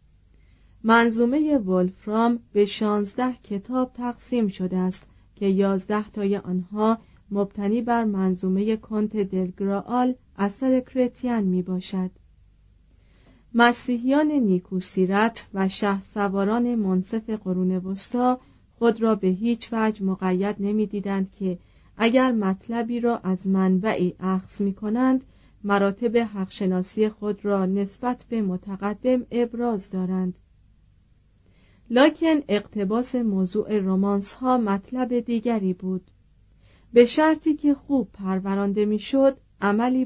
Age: 40-59